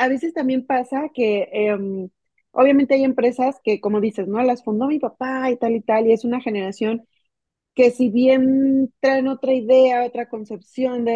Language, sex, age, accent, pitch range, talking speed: Spanish, female, 30-49, Mexican, 220-260 Hz, 180 wpm